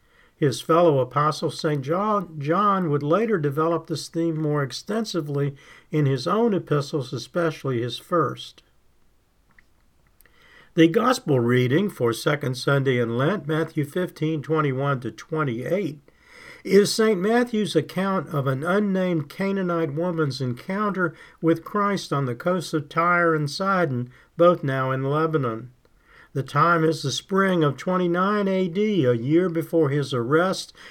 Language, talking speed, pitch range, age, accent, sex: English, 130 wpm, 140-175 Hz, 50-69, American, male